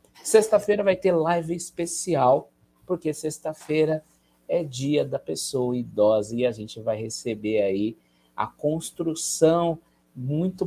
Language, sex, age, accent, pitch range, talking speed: Portuguese, male, 50-69, Brazilian, 115-155 Hz, 120 wpm